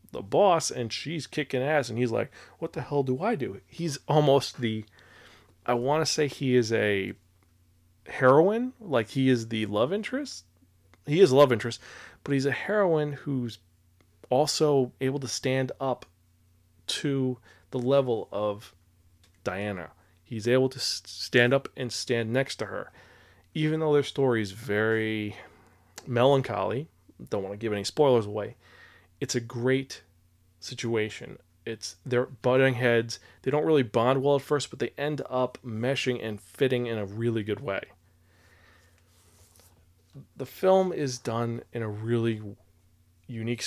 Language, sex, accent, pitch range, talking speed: English, male, American, 100-135 Hz, 150 wpm